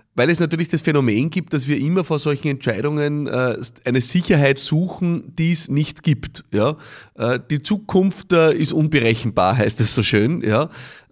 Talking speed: 155 wpm